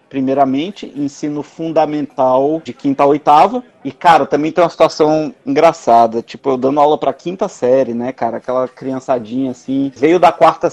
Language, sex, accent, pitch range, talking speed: Portuguese, male, Brazilian, 140-185 Hz, 160 wpm